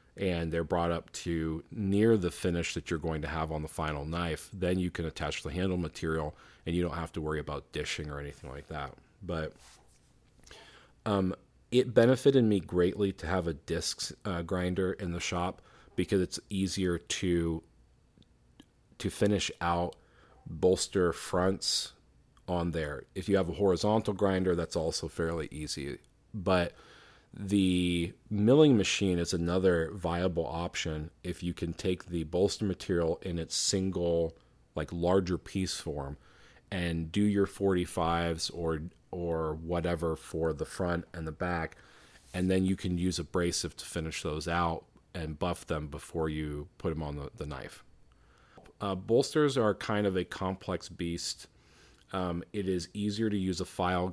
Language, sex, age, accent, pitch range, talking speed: English, male, 40-59, American, 80-95 Hz, 160 wpm